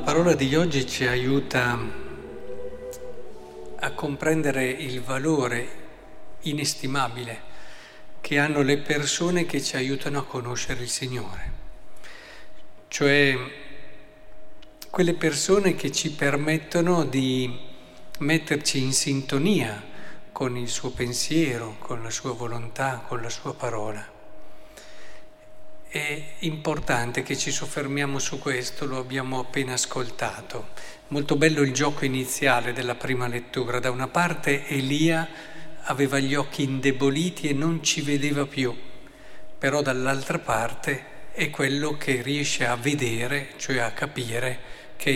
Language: Italian